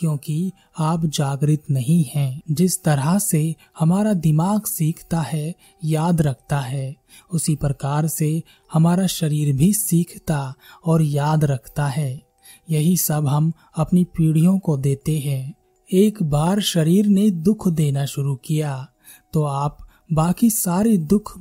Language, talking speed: Hindi, 130 wpm